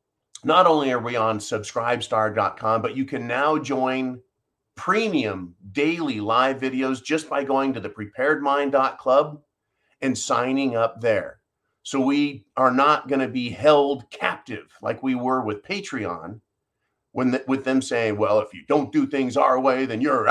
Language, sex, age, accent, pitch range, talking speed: English, male, 40-59, American, 120-145 Hz, 160 wpm